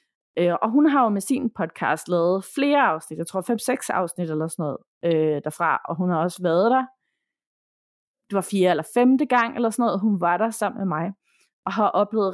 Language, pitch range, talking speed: Danish, 170-225 Hz, 205 wpm